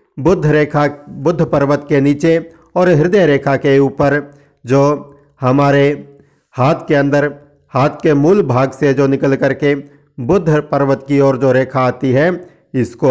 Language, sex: Hindi, male